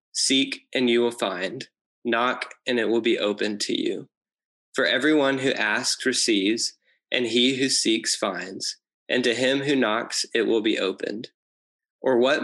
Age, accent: 20-39, American